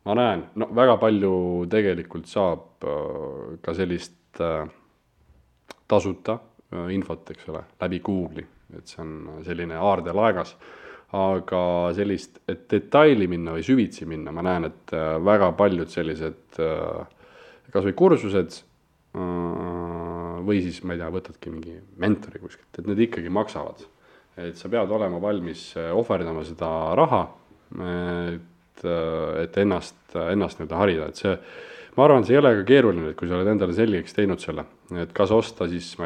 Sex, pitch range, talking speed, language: male, 85-100 Hz, 135 wpm, English